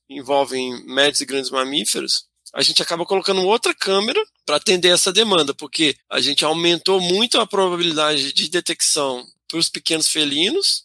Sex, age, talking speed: male, 20-39, 155 wpm